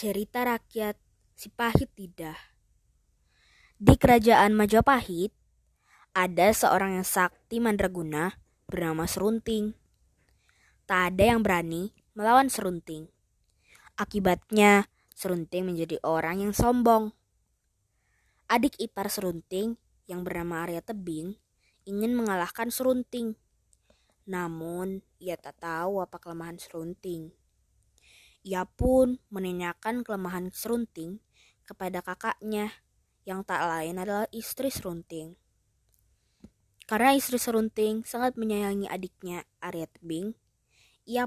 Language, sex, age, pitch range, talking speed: Indonesian, female, 20-39, 170-225 Hz, 95 wpm